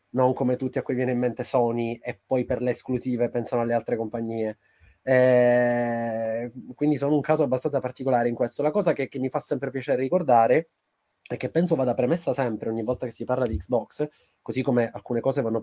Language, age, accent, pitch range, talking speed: Italian, 20-39, native, 120-135 Hz, 205 wpm